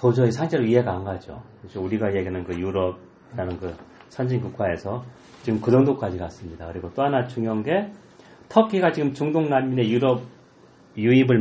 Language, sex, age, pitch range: Korean, male, 40-59, 95-130 Hz